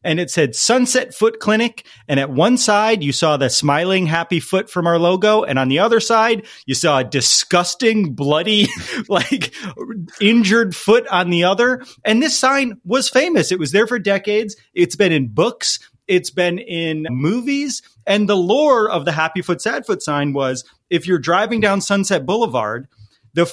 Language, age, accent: English, 30-49, American